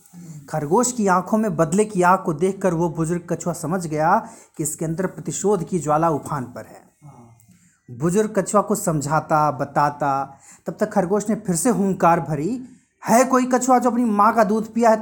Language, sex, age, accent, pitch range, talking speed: Hindi, male, 30-49, native, 145-215 Hz, 185 wpm